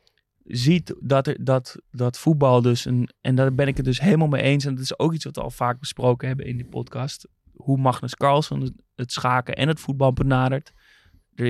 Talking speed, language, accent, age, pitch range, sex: 200 wpm, Dutch, Dutch, 20-39, 120-135 Hz, male